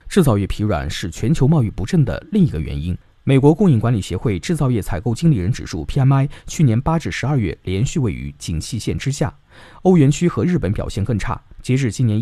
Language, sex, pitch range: Chinese, male, 95-155 Hz